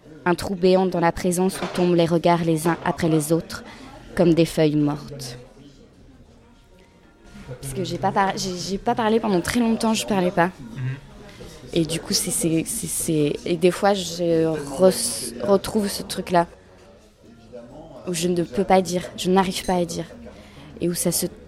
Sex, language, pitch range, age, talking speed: female, French, 155-200 Hz, 20-39, 185 wpm